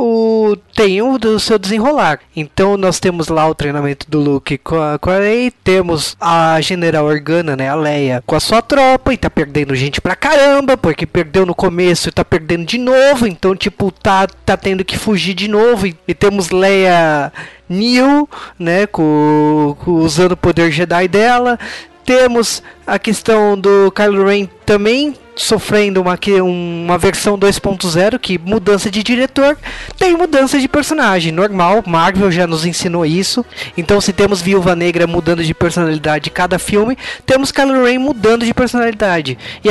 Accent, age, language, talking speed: Brazilian, 20-39, Portuguese, 160 wpm